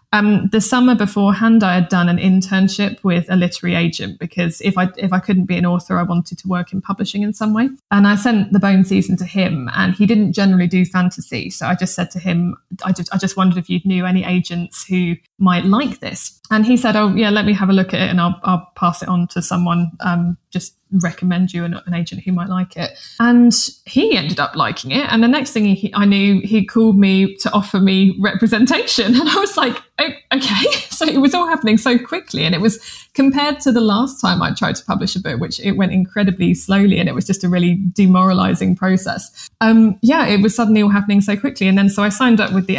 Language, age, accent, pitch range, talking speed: English, 20-39, British, 185-215 Hz, 240 wpm